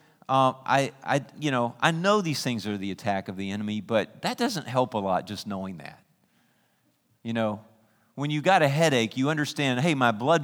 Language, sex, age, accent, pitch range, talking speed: English, male, 40-59, American, 110-140 Hz, 205 wpm